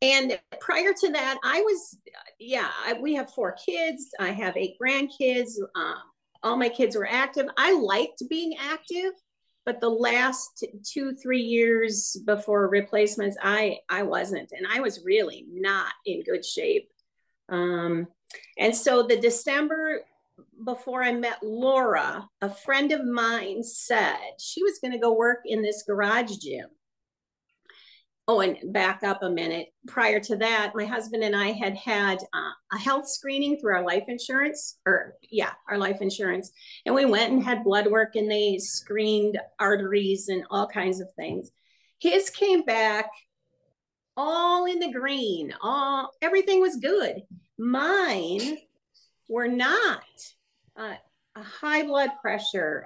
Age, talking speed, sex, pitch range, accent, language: 40-59, 150 wpm, female, 210-280 Hz, American, English